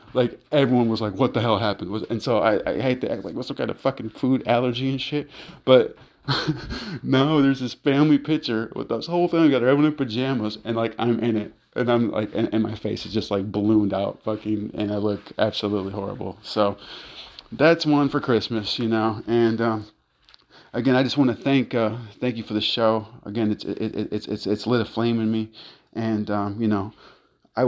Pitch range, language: 105-120 Hz, English